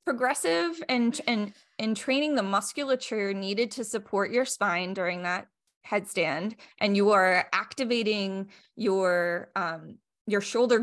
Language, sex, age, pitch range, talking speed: English, female, 20-39, 195-245 Hz, 125 wpm